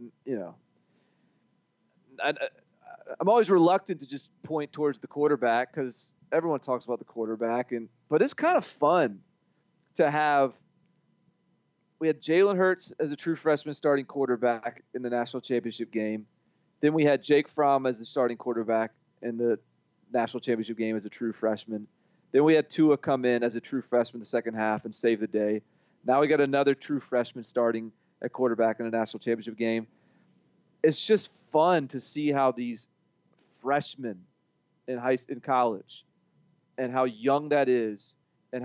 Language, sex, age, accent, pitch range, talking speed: English, male, 30-49, American, 120-155 Hz, 170 wpm